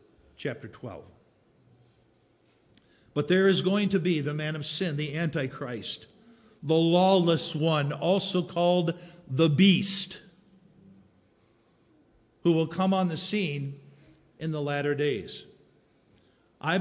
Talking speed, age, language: 115 wpm, 50-69, English